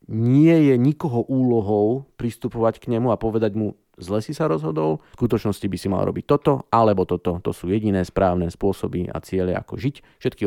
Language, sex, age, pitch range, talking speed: Slovak, male, 30-49, 95-120 Hz, 190 wpm